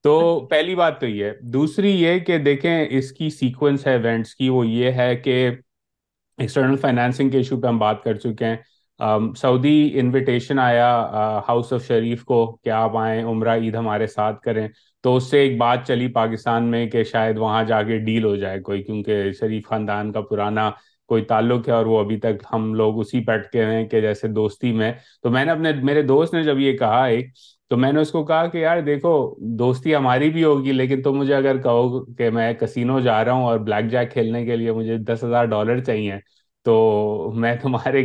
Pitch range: 115-135 Hz